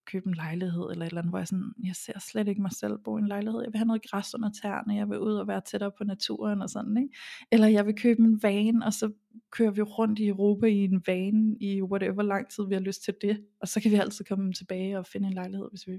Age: 20-39